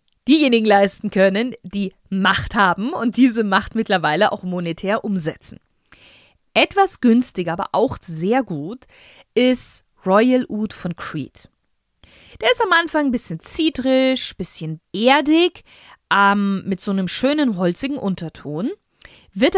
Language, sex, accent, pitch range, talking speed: German, female, German, 185-255 Hz, 130 wpm